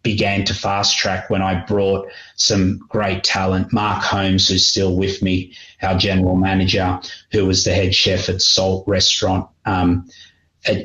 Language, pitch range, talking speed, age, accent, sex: English, 95-105 Hz, 160 wpm, 30-49, Australian, male